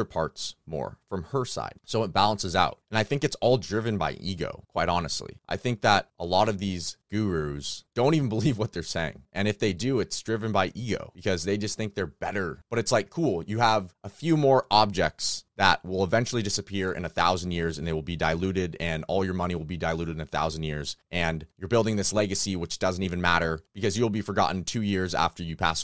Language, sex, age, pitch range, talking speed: English, male, 30-49, 85-110 Hz, 230 wpm